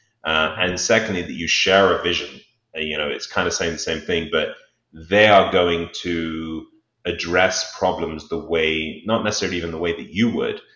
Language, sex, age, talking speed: English, male, 30-49, 195 wpm